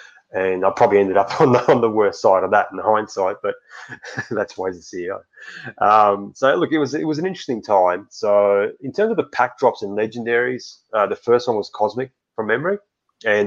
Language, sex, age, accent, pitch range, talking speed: English, male, 20-39, Australian, 95-125 Hz, 220 wpm